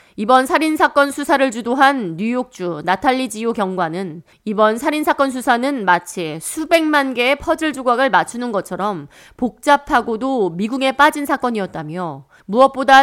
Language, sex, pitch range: Korean, female, 185-275 Hz